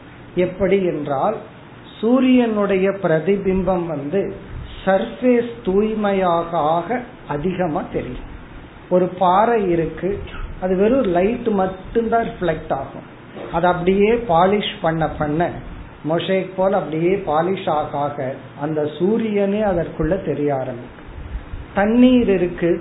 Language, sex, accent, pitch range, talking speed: Tamil, male, native, 160-200 Hz, 80 wpm